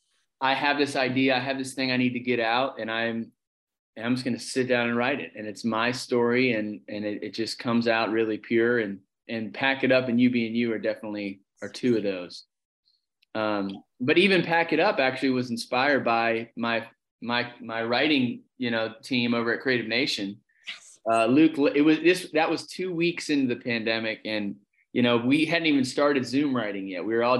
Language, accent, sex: English, American, male